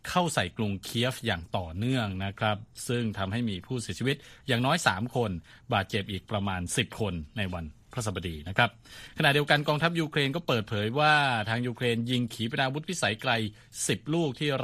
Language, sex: Thai, male